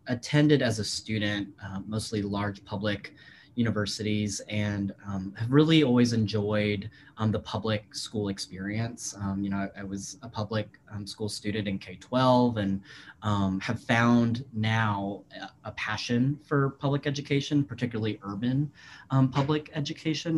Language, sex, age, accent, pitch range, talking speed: English, male, 20-39, American, 105-130 Hz, 145 wpm